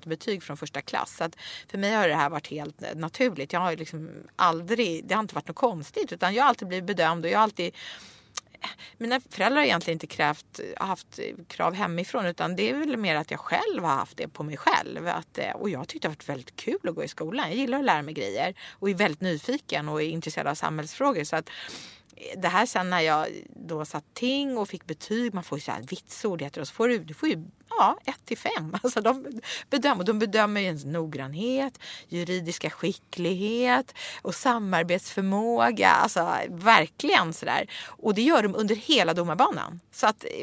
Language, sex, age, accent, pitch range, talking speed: English, female, 30-49, Swedish, 160-225 Hz, 205 wpm